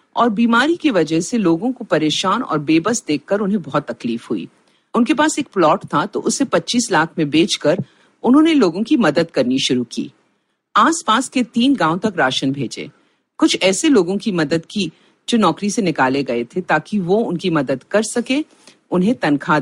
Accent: native